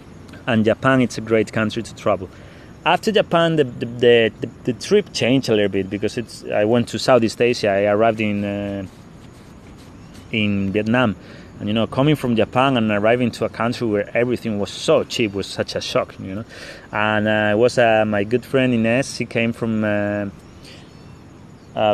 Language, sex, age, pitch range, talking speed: English, male, 30-49, 105-125 Hz, 185 wpm